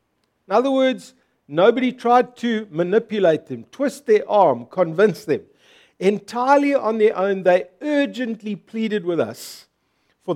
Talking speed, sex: 135 wpm, male